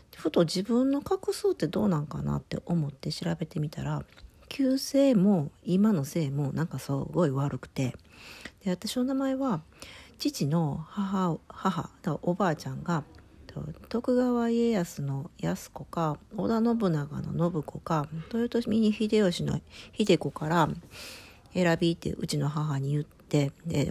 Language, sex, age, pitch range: Japanese, female, 40-59, 150-205 Hz